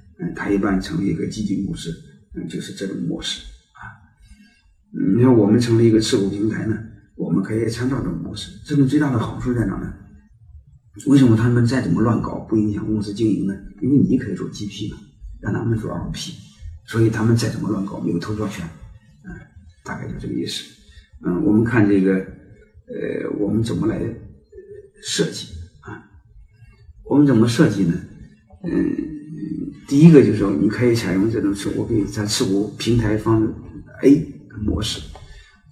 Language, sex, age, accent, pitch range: Chinese, male, 50-69, native, 100-120 Hz